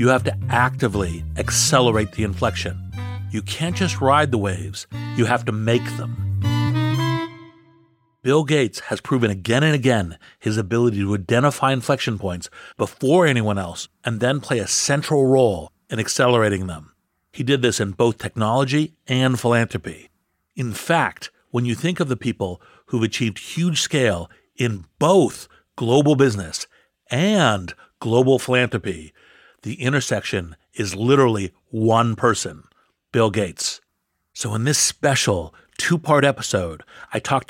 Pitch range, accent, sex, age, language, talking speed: 100-130 Hz, American, male, 60-79, English, 140 wpm